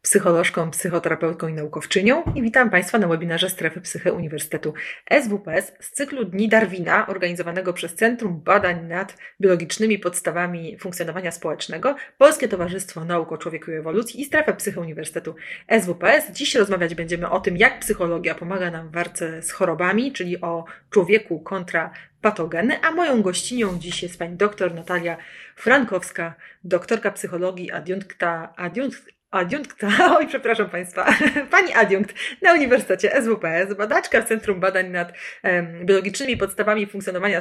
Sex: female